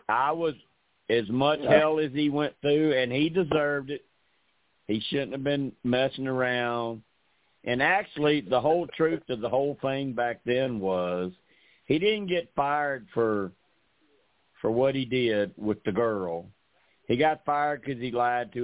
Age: 50-69